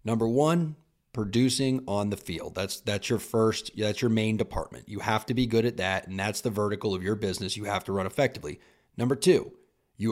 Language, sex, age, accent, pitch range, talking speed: English, male, 30-49, American, 105-135 Hz, 215 wpm